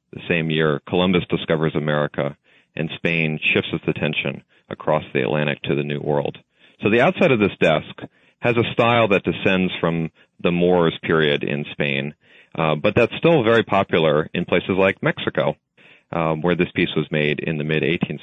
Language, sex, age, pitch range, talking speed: English, male, 40-59, 75-100 Hz, 180 wpm